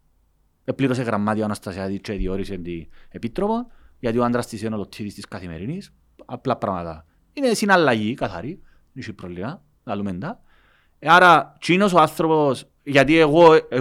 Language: Greek